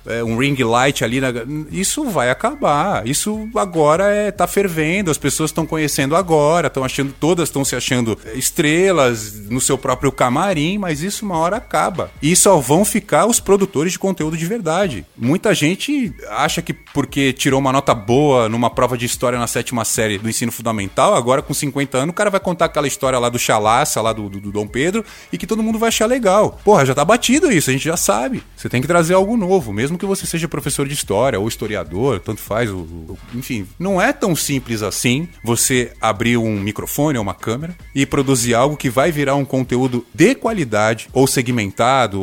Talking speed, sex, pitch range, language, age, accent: 200 wpm, male, 125-180 Hz, Portuguese, 20-39, Brazilian